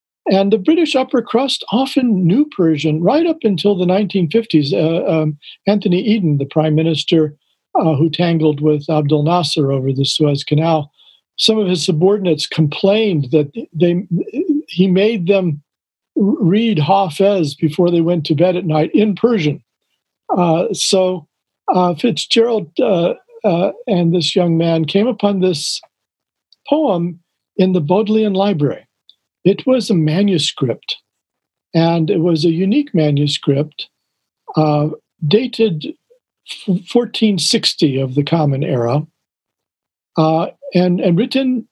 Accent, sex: American, male